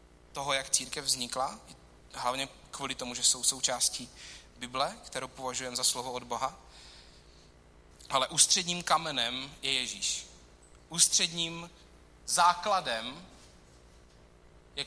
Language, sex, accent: Czech, male, native